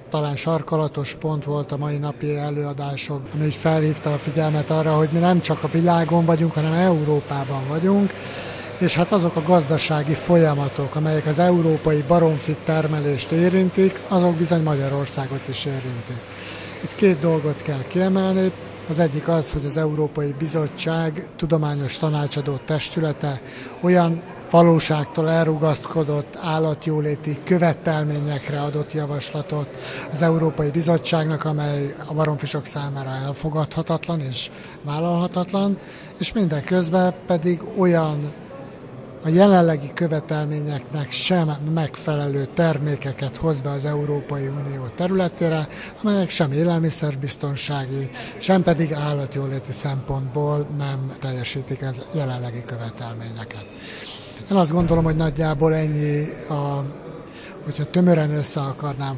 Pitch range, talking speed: 140-165 Hz, 115 wpm